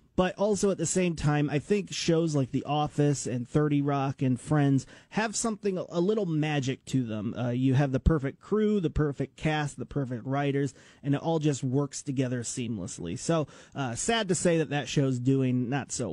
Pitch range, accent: 130-170 Hz, American